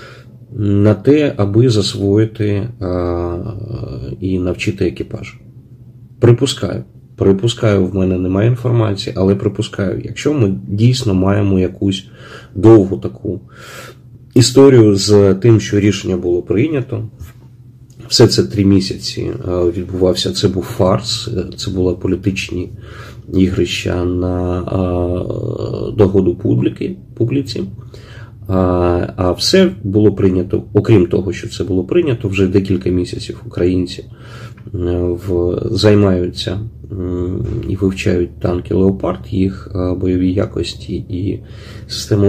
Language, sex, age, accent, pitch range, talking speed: Ukrainian, male, 30-49, native, 95-115 Hz, 100 wpm